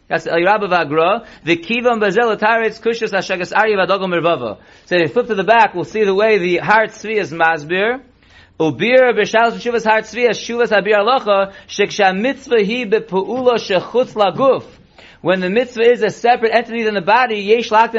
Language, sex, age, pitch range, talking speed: English, male, 30-49, 195-235 Hz, 90 wpm